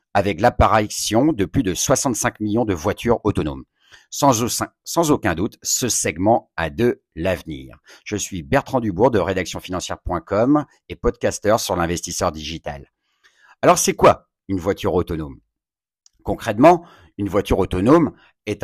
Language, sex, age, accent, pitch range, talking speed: French, male, 50-69, French, 90-115 Hz, 130 wpm